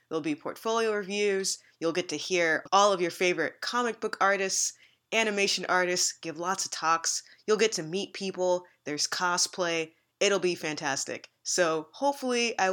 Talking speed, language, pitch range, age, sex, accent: 160 wpm, English, 165-210 Hz, 20-39, female, American